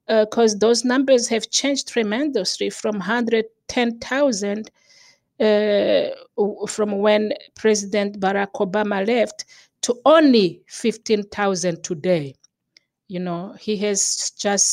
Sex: female